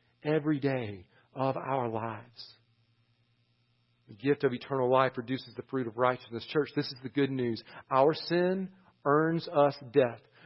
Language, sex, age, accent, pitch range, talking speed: English, male, 40-59, American, 120-155 Hz, 150 wpm